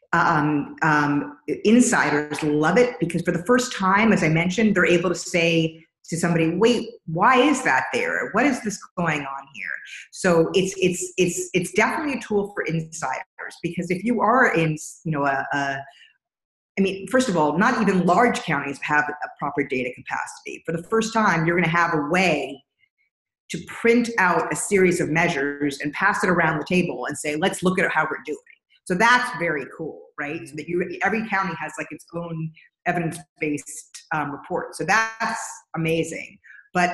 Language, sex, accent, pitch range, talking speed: English, female, American, 150-185 Hz, 190 wpm